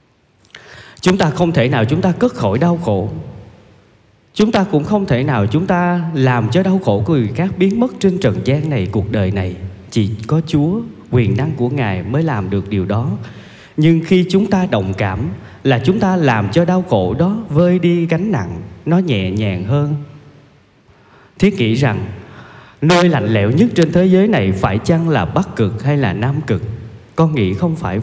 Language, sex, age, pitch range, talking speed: Vietnamese, male, 20-39, 105-160 Hz, 200 wpm